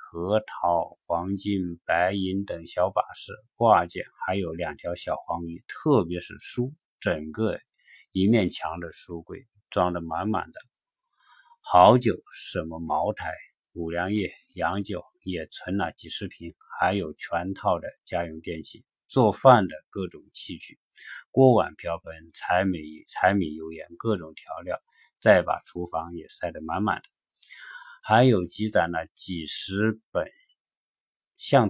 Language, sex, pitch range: Chinese, male, 85-110 Hz